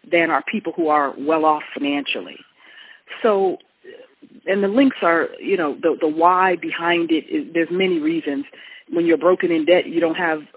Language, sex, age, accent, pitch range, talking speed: English, female, 40-59, American, 160-200 Hz, 170 wpm